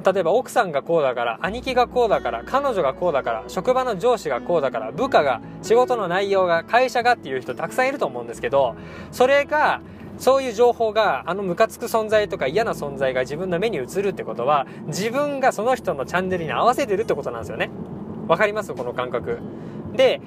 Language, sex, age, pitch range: Japanese, male, 20-39, 170-245 Hz